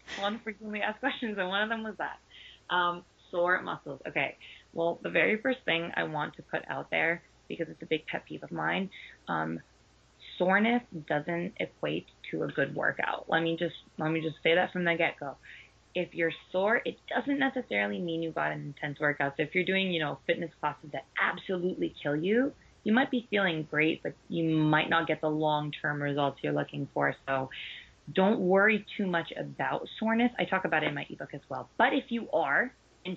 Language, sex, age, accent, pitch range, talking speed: English, female, 20-39, American, 155-195 Hz, 210 wpm